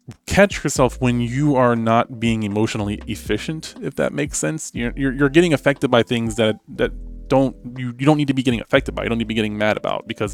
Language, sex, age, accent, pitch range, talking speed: English, male, 20-39, American, 105-125 Hz, 240 wpm